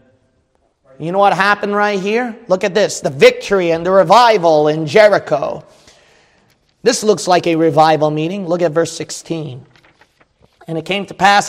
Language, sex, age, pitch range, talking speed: English, male, 30-49, 170-270 Hz, 160 wpm